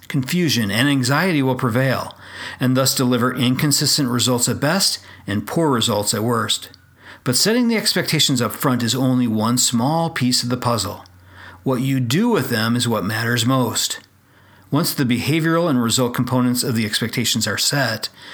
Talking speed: 165 wpm